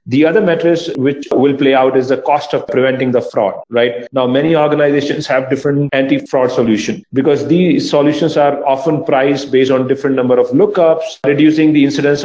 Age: 40-59